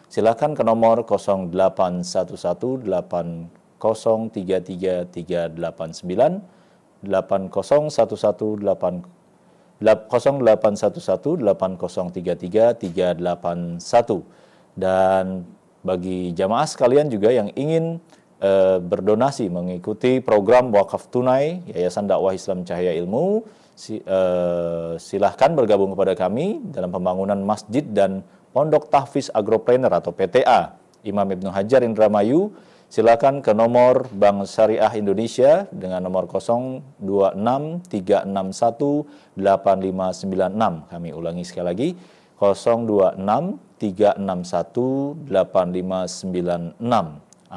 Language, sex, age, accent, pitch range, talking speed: Indonesian, male, 40-59, native, 95-120 Hz, 70 wpm